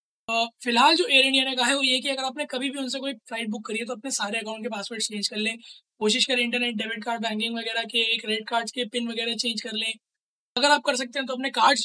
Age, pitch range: 20-39, 220-255 Hz